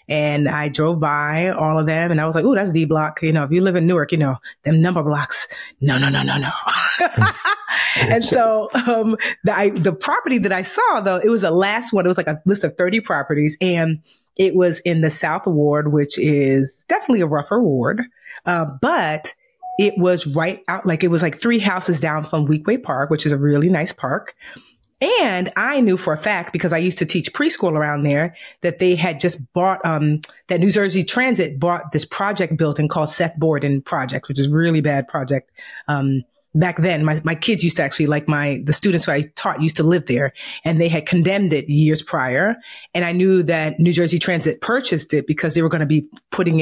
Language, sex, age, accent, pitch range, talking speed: English, female, 30-49, American, 150-185 Hz, 225 wpm